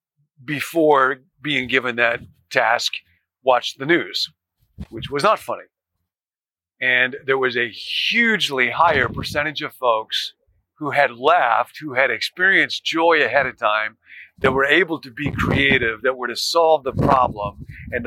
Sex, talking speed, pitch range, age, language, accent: male, 145 wpm, 120-150 Hz, 50-69, English, American